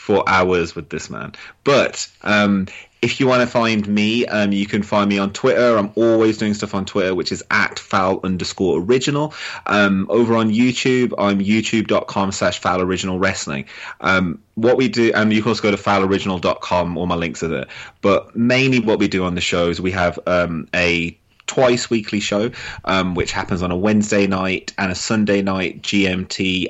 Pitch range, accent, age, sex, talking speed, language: 90-110 Hz, British, 30-49, male, 195 wpm, English